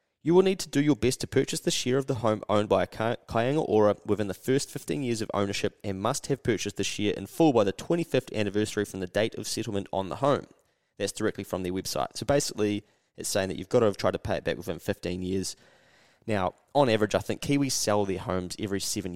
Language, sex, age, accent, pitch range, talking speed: English, male, 20-39, Australian, 95-120 Hz, 245 wpm